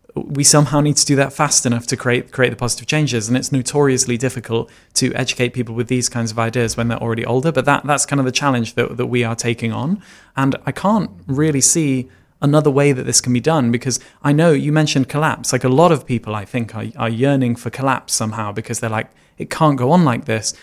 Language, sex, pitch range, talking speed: English, male, 120-145 Hz, 240 wpm